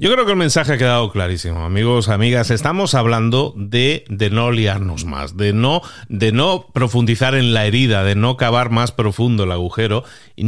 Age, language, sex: 40-59, Spanish, male